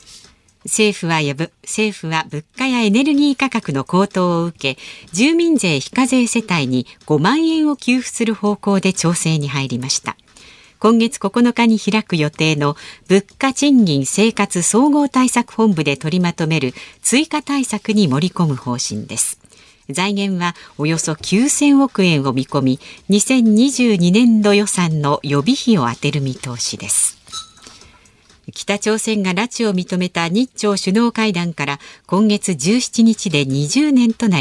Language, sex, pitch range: Japanese, female, 155-225 Hz